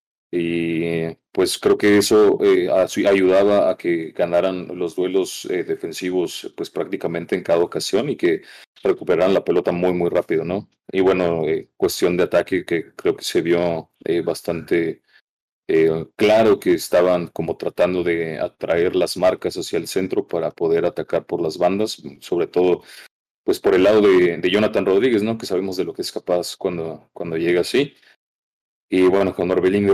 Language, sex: Spanish, male